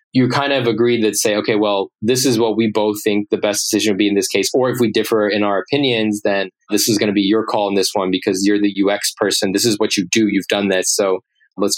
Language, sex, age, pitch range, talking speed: English, male, 20-39, 100-115 Hz, 285 wpm